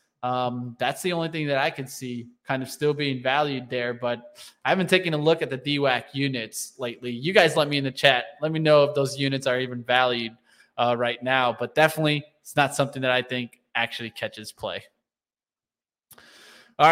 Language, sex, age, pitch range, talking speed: English, male, 20-39, 130-155 Hz, 200 wpm